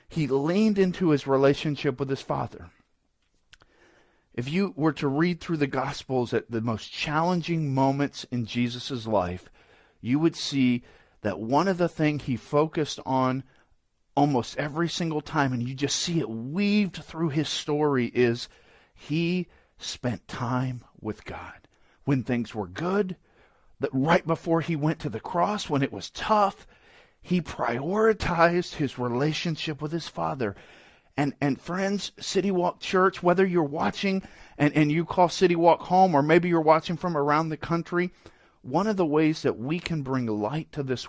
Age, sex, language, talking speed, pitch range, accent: 40-59, male, English, 165 wpm, 130-180 Hz, American